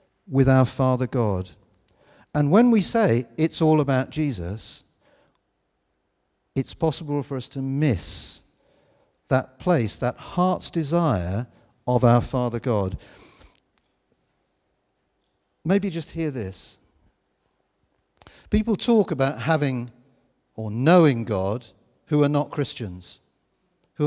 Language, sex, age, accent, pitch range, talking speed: English, male, 50-69, British, 110-165 Hz, 105 wpm